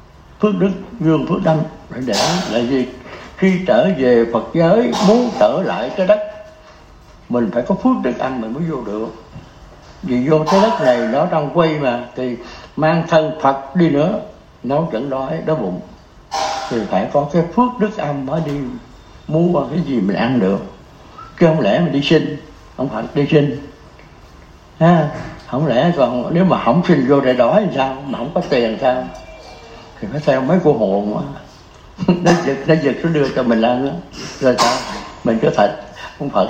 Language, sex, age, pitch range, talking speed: Vietnamese, male, 60-79, 125-170 Hz, 190 wpm